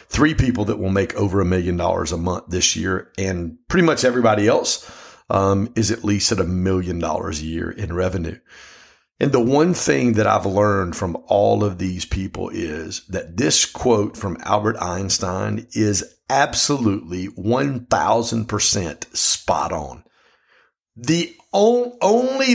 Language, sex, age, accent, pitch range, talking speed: English, male, 50-69, American, 100-140 Hz, 150 wpm